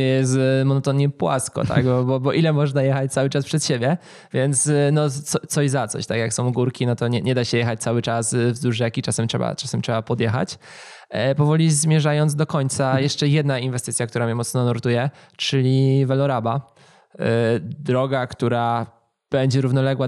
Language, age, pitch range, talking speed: Polish, 20-39, 120-140 Hz, 175 wpm